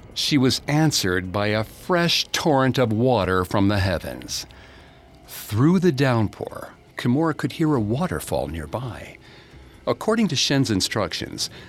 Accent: American